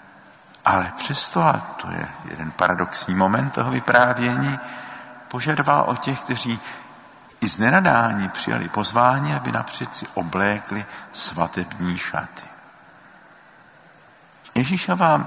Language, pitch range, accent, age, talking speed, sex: Czech, 90-120 Hz, native, 50-69, 100 wpm, male